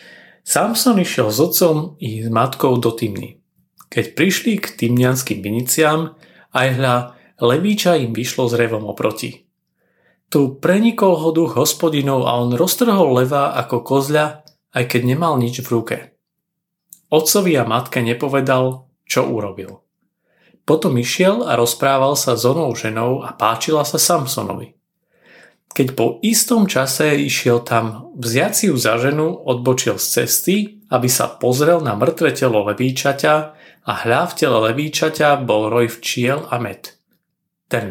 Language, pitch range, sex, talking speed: Slovak, 120-165 Hz, male, 135 wpm